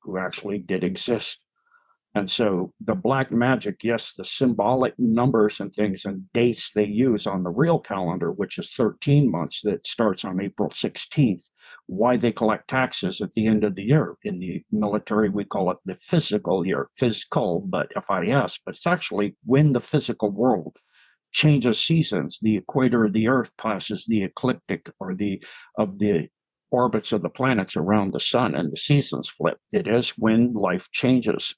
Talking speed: 175 wpm